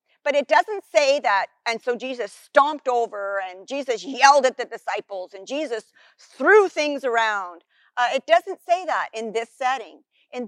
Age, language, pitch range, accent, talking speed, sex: 50-69, English, 225-295 Hz, American, 170 wpm, female